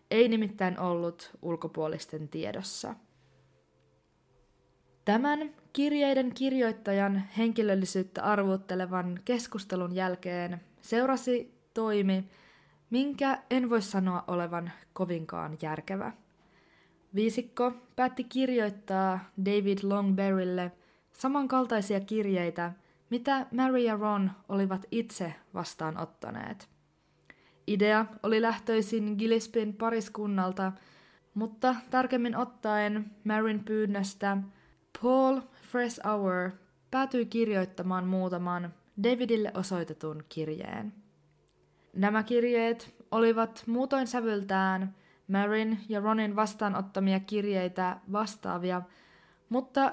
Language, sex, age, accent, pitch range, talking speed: Finnish, female, 20-39, native, 185-230 Hz, 80 wpm